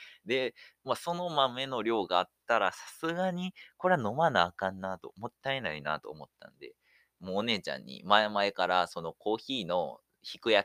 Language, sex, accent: Japanese, male, native